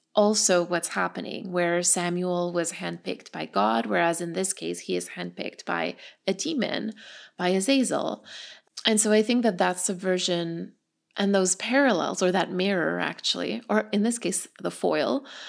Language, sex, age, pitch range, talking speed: English, female, 20-39, 180-225 Hz, 160 wpm